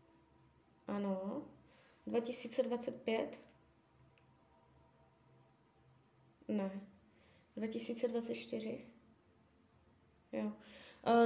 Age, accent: 20-39, native